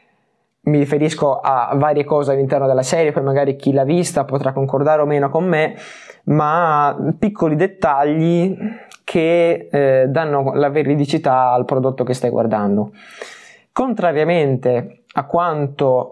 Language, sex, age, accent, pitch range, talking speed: Italian, male, 20-39, native, 135-170 Hz, 130 wpm